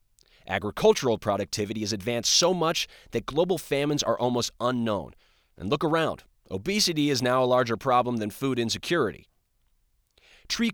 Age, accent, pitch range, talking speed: 30-49, American, 105-145 Hz, 140 wpm